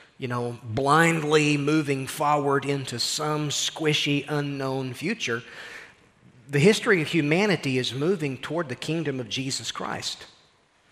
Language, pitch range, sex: English, 130-165 Hz, male